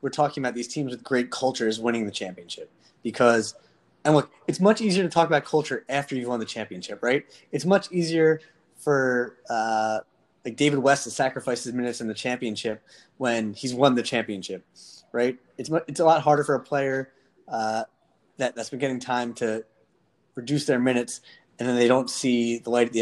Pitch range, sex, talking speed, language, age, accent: 115-140 Hz, male, 195 wpm, English, 20-39, American